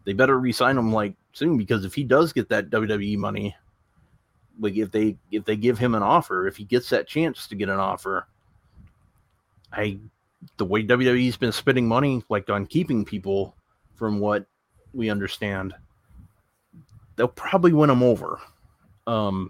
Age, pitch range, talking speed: 30-49, 100-120 Hz, 165 wpm